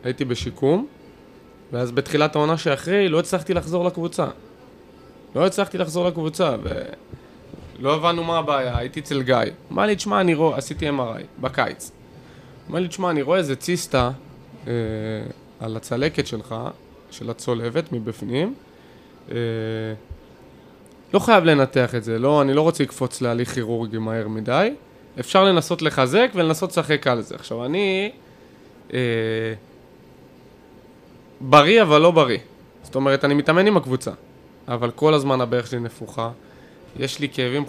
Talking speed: 140 wpm